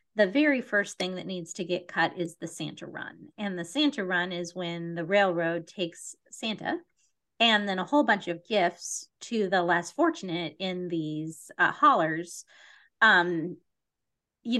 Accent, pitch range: American, 170-230 Hz